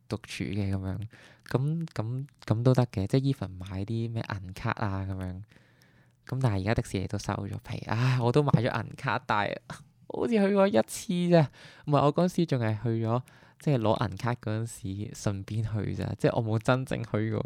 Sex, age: male, 20-39